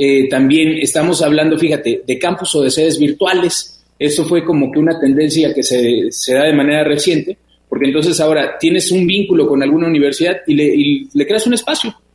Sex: male